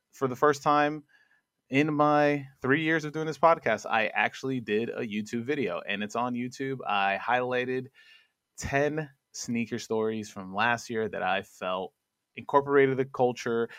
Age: 20-39